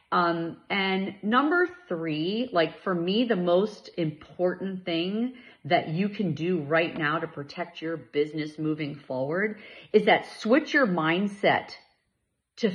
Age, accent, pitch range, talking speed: 40-59, American, 165-220 Hz, 135 wpm